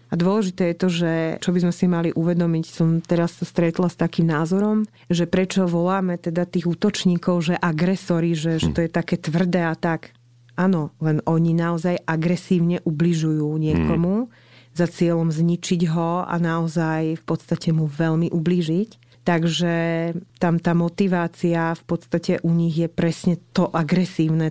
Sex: female